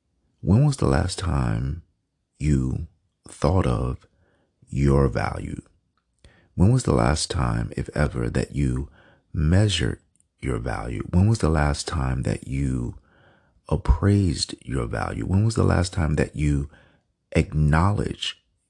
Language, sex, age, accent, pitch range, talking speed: English, male, 40-59, American, 70-95 Hz, 130 wpm